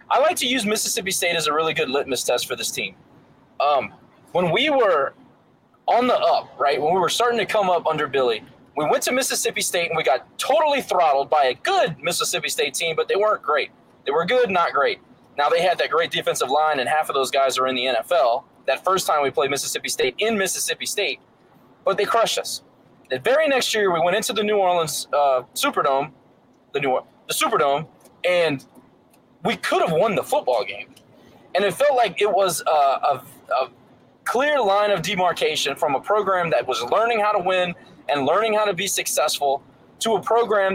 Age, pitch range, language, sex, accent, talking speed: 20-39, 170-235 Hz, English, male, American, 205 wpm